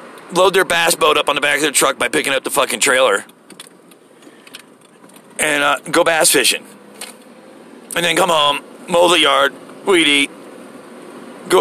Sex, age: male, 40-59